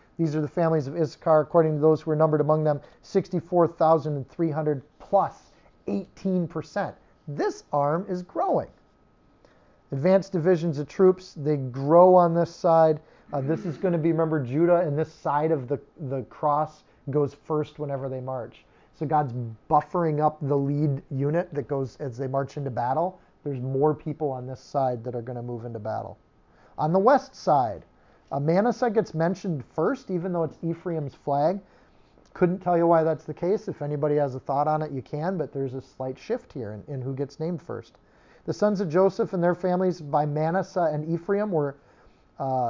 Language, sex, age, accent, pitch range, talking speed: English, male, 40-59, American, 140-170 Hz, 185 wpm